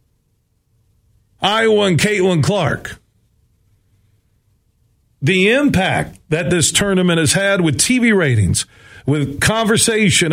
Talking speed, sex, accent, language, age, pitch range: 95 wpm, male, American, English, 50-69, 125-185 Hz